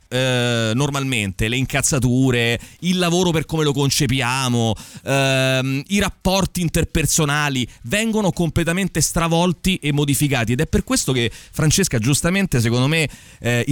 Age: 30-49